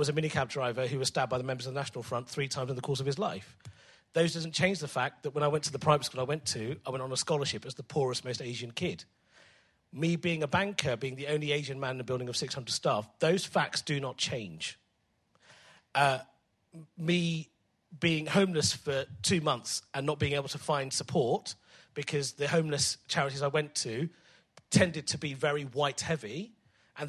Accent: British